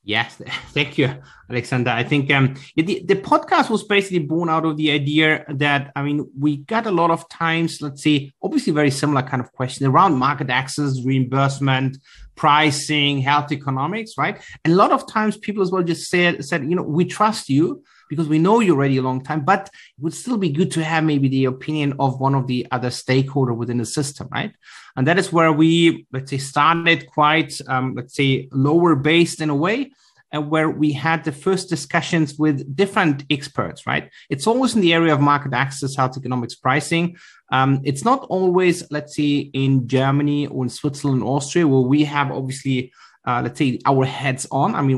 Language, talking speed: English, 200 wpm